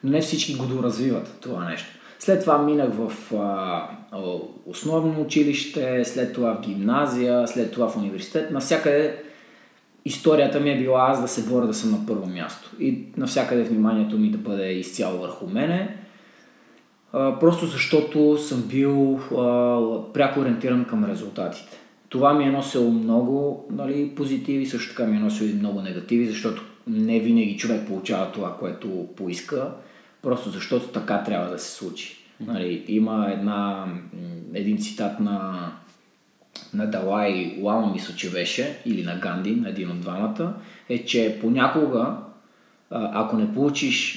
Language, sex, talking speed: Bulgarian, male, 145 wpm